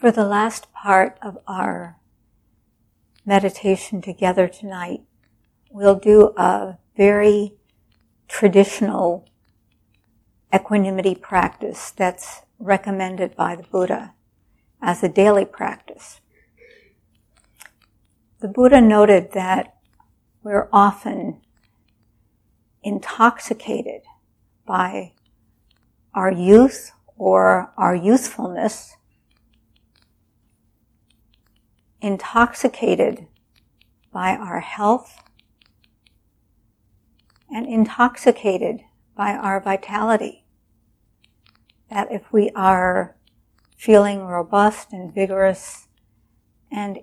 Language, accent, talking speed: English, American, 70 wpm